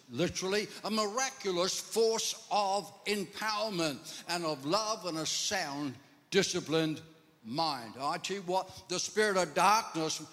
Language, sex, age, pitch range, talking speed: English, male, 60-79, 170-205 Hz, 130 wpm